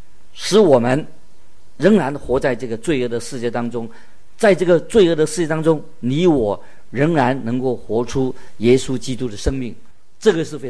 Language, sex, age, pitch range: Chinese, male, 50-69, 115-145 Hz